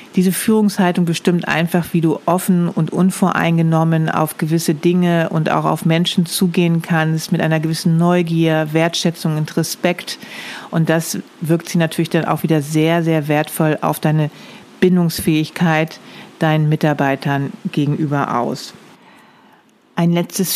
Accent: German